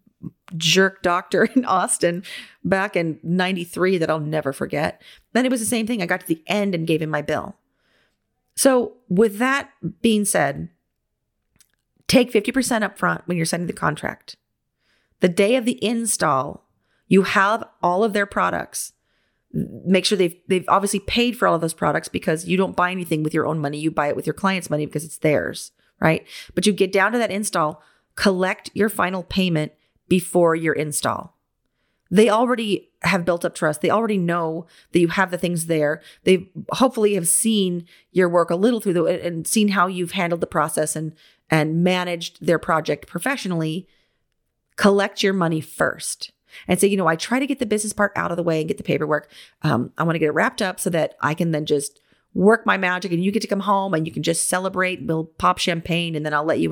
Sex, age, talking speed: female, 30-49, 205 wpm